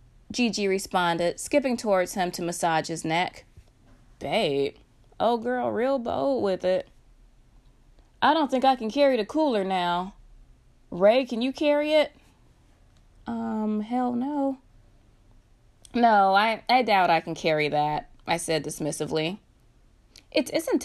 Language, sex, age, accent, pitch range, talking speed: English, female, 20-39, American, 160-235 Hz, 130 wpm